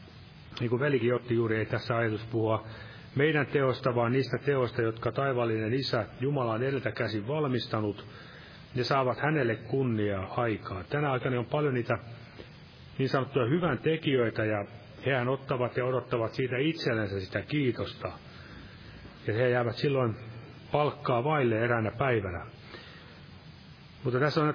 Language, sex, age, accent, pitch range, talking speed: Finnish, male, 30-49, native, 110-135 Hz, 135 wpm